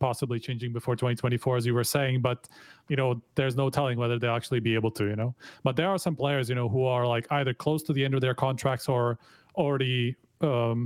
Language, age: English, 30-49